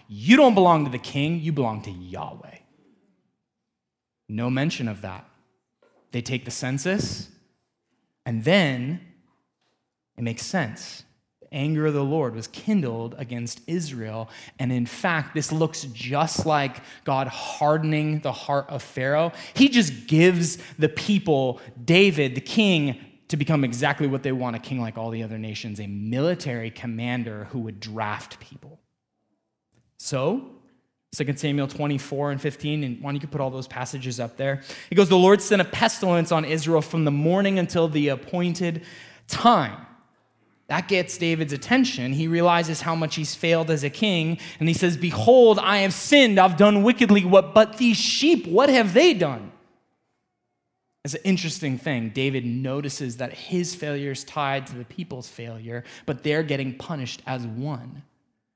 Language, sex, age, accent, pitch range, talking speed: English, male, 20-39, American, 125-175 Hz, 160 wpm